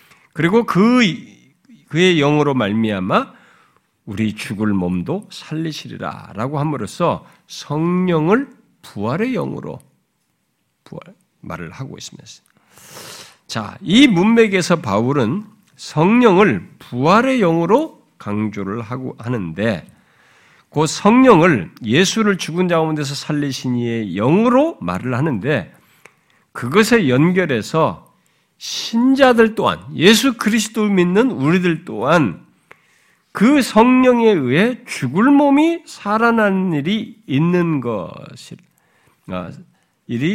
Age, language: 50-69, Korean